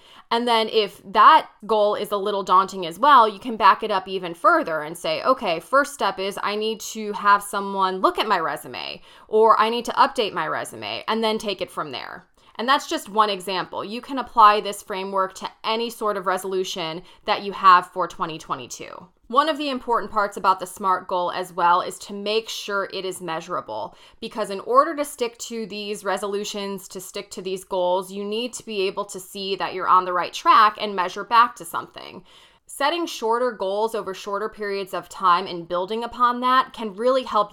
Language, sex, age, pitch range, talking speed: English, female, 20-39, 185-230 Hz, 210 wpm